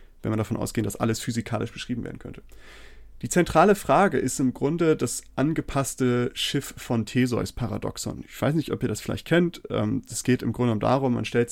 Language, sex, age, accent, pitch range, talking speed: German, male, 30-49, German, 115-140 Hz, 190 wpm